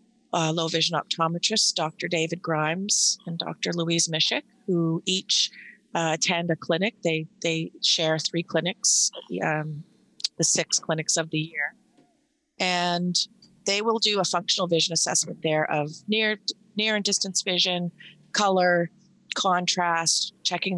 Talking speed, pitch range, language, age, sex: 140 wpm, 165-200 Hz, English, 30-49, female